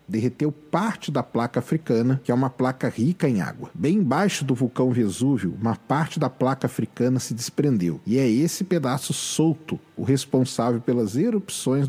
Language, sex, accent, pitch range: Portuguese, male, Brazilian, 125-165 Hz